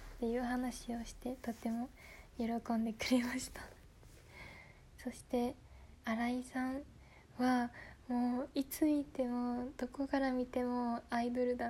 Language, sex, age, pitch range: Japanese, female, 20-39, 225-250 Hz